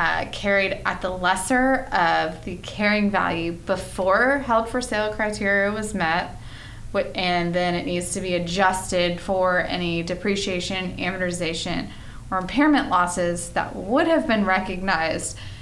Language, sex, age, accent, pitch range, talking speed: English, female, 20-39, American, 170-200 Hz, 135 wpm